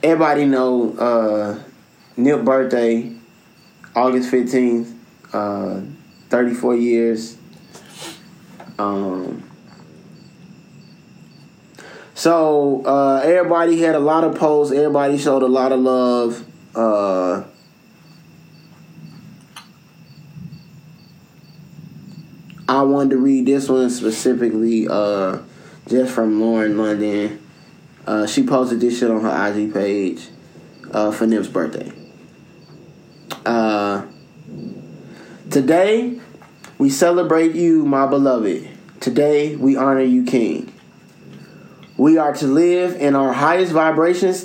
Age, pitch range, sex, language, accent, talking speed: 20-39, 120-155 Hz, male, English, American, 95 wpm